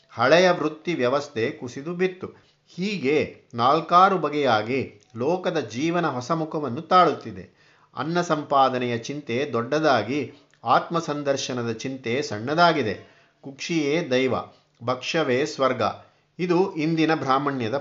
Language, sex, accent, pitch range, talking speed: Kannada, male, native, 125-155 Hz, 90 wpm